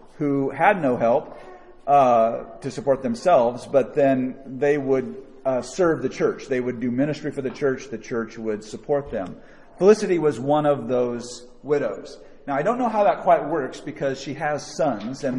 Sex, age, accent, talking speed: male, 40-59, American, 180 wpm